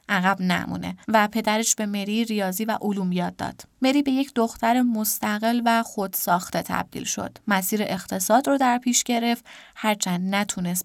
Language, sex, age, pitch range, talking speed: Persian, female, 20-39, 195-245 Hz, 155 wpm